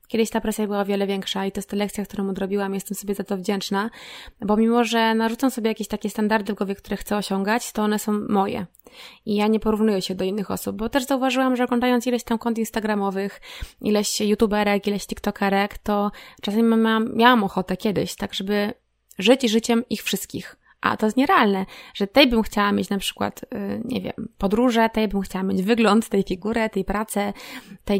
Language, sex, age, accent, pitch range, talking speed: Polish, female, 20-39, native, 200-225 Hz, 200 wpm